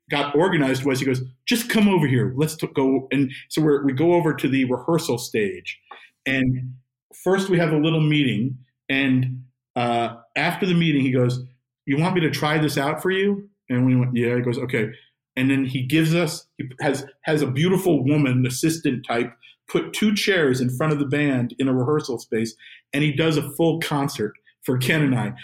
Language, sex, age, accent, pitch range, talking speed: English, male, 50-69, American, 135-175 Hz, 205 wpm